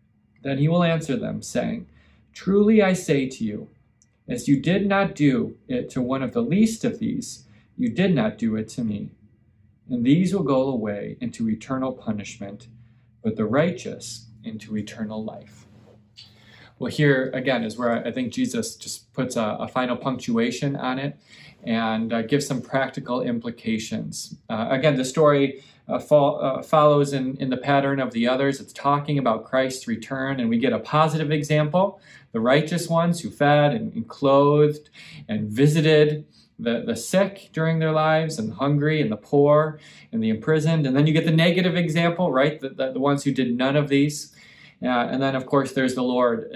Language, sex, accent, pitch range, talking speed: English, male, American, 120-160 Hz, 180 wpm